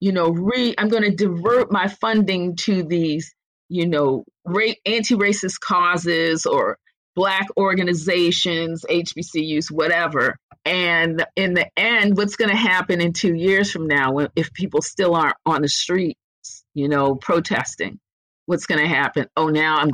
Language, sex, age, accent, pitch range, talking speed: English, female, 40-59, American, 155-200 Hz, 155 wpm